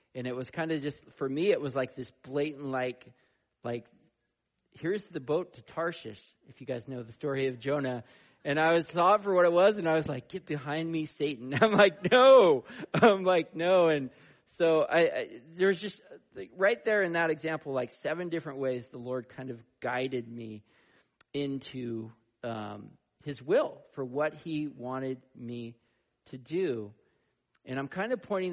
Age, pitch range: 40-59, 125-160 Hz